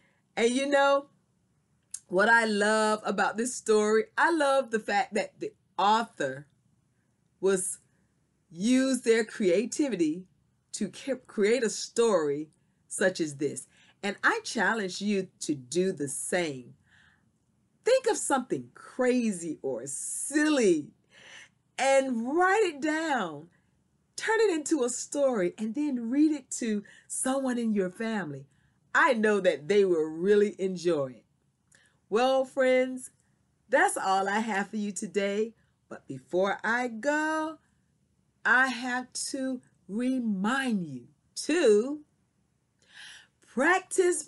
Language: English